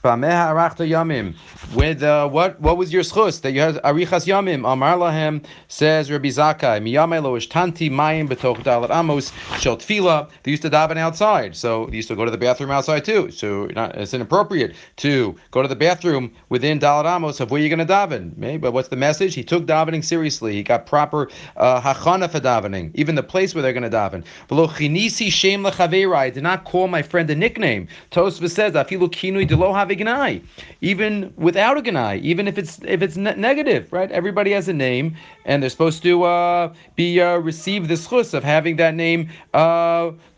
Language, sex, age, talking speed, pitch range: English, male, 40-59, 195 wpm, 140-180 Hz